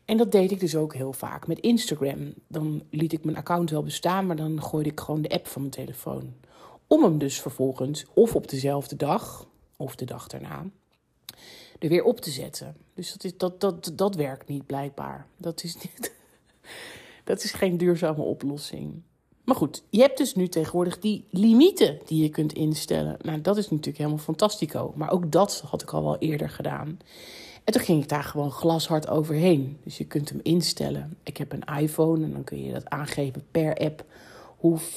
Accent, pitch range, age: Dutch, 145-175 Hz, 40-59